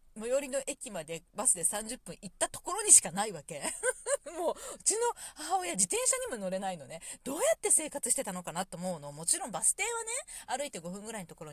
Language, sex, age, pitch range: Japanese, female, 40-59, 180-280 Hz